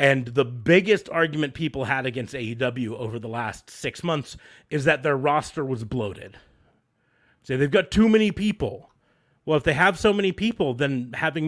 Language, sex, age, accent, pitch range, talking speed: English, male, 30-49, American, 115-150 Hz, 185 wpm